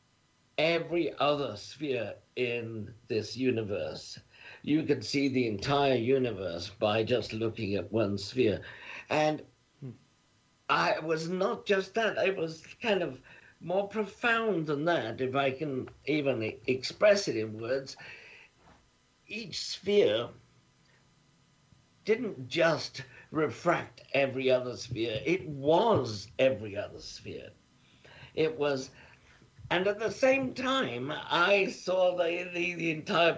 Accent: British